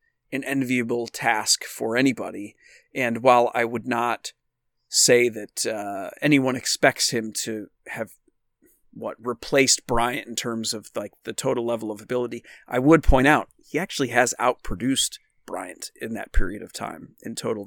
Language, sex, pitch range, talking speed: English, male, 115-140 Hz, 155 wpm